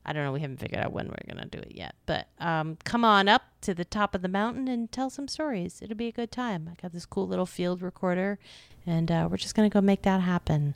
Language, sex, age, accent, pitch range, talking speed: English, female, 30-49, American, 155-195 Hz, 285 wpm